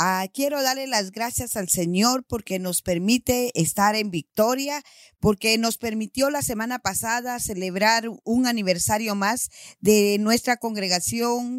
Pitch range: 195-235 Hz